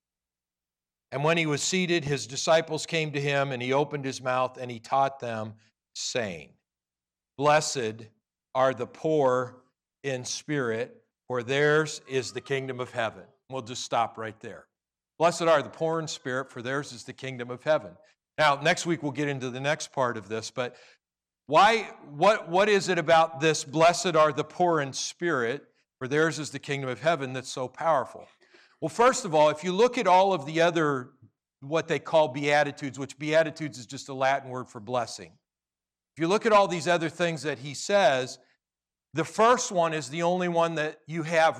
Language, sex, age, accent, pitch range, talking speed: English, male, 50-69, American, 130-170 Hz, 190 wpm